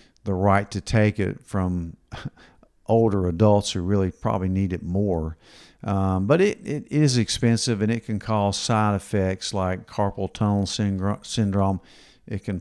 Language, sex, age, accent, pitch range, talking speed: English, male, 50-69, American, 95-110 Hz, 150 wpm